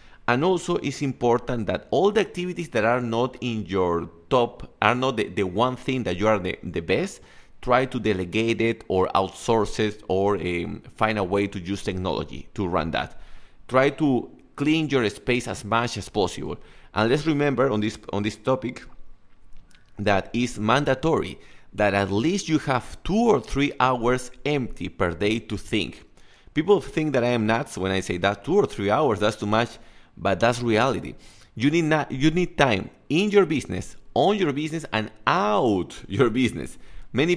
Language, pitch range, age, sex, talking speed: English, 105-135 Hz, 30-49, male, 185 wpm